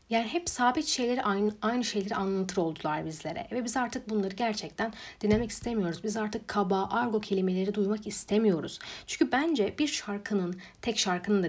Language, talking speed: Turkish, 160 wpm